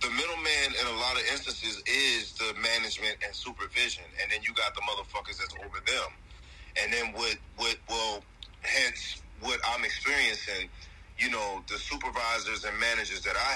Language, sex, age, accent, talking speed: English, male, 30-49, American, 165 wpm